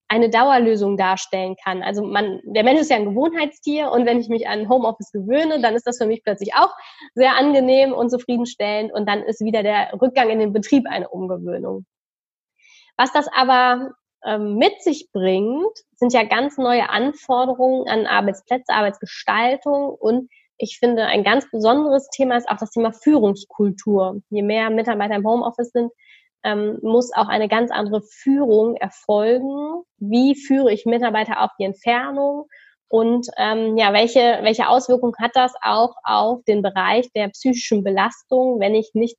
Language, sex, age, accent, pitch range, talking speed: German, female, 20-39, German, 210-260 Hz, 160 wpm